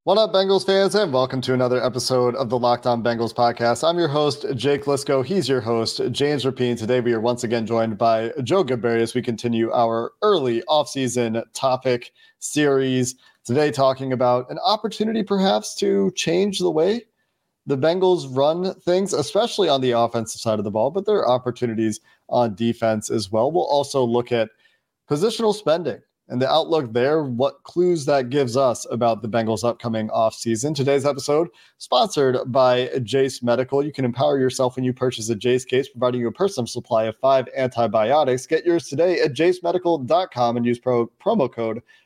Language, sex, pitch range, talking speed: English, male, 120-150 Hz, 175 wpm